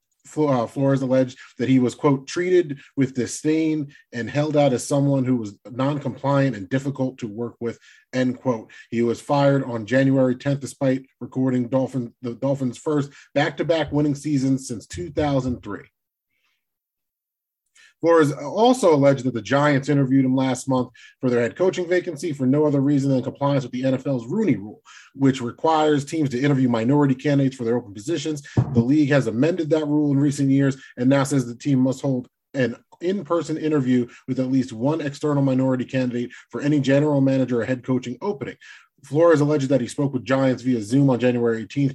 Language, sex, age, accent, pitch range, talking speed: English, male, 30-49, American, 125-145 Hz, 175 wpm